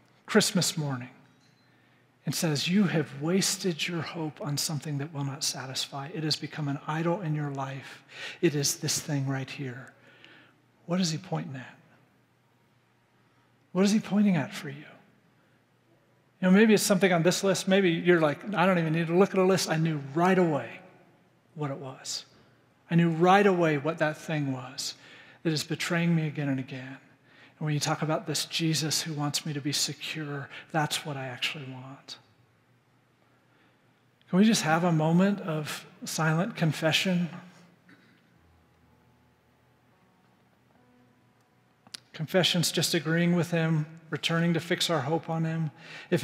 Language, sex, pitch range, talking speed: English, male, 140-175 Hz, 160 wpm